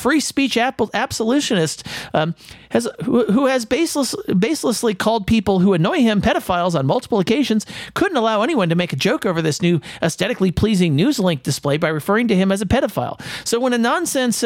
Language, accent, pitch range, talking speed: English, American, 165-230 Hz, 185 wpm